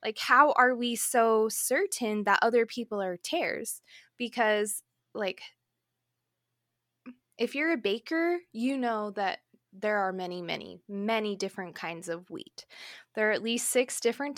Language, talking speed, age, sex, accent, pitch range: English, 145 wpm, 20-39, female, American, 215-270 Hz